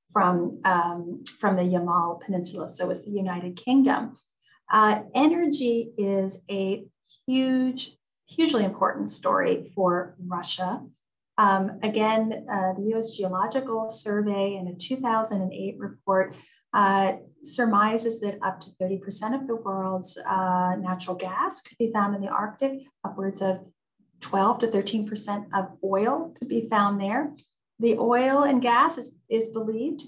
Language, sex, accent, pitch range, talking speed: English, female, American, 185-230 Hz, 140 wpm